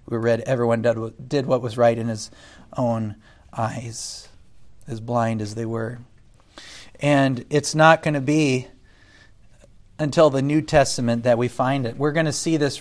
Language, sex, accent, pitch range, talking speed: English, male, American, 115-145 Hz, 170 wpm